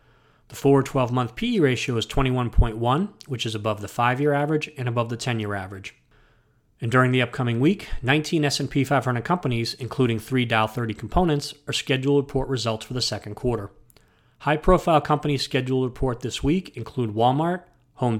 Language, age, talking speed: English, 30-49, 170 wpm